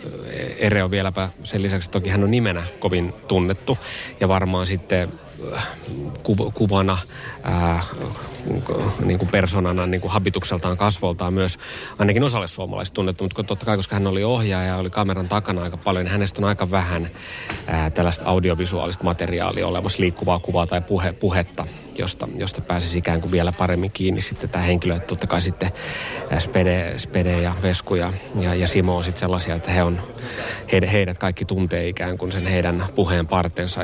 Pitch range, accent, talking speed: 90-100 Hz, native, 165 wpm